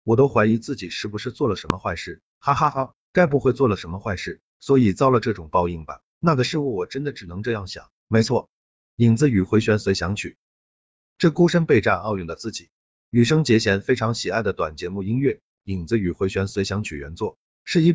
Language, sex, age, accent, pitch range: Chinese, male, 50-69, native, 95-125 Hz